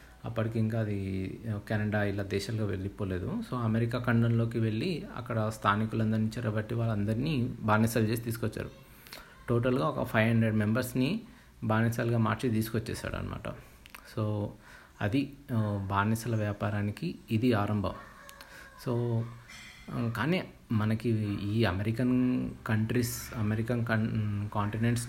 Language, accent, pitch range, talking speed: Telugu, native, 110-125 Hz, 100 wpm